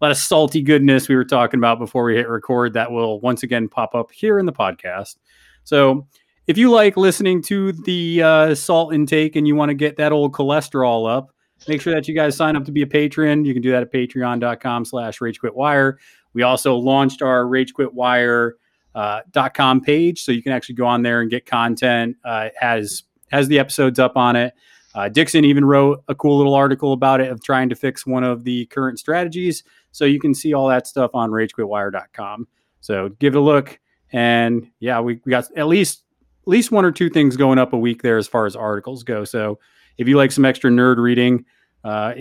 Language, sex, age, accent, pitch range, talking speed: English, male, 30-49, American, 120-150 Hz, 215 wpm